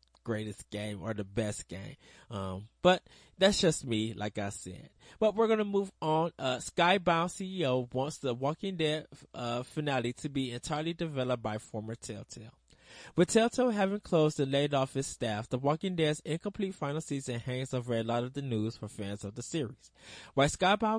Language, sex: English, male